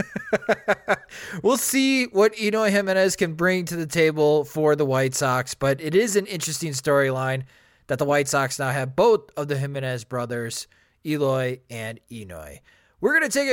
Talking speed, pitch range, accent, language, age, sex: 170 wpm, 140-210 Hz, American, English, 20-39, male